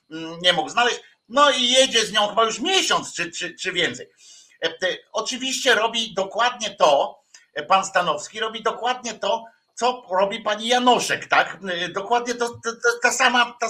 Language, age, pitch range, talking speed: Polish, 50-69, 185-250 Hz, 150 wpm